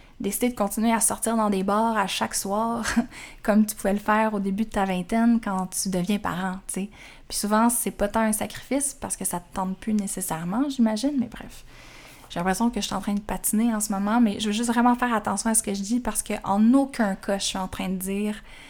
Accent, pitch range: Canadian, 200-240 Hz